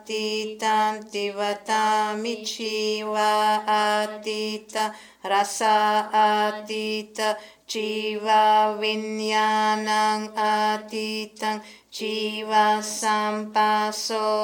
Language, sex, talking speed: English, female, 40 wpm